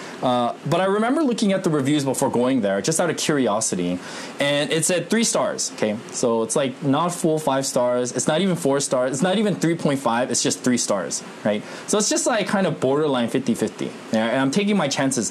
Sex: male